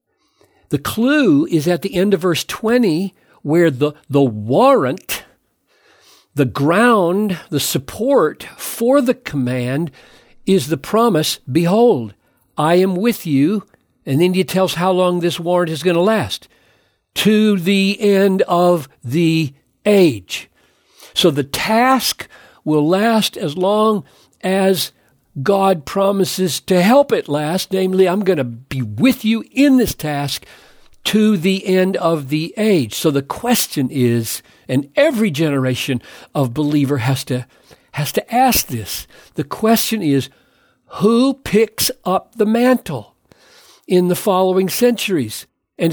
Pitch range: 145-210 Hz